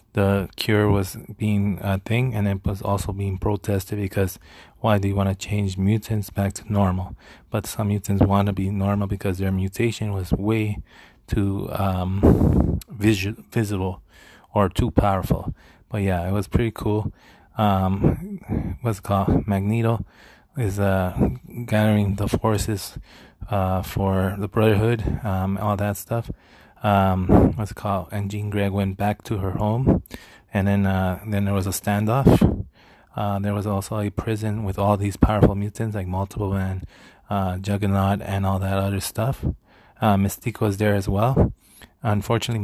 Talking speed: 160 wpm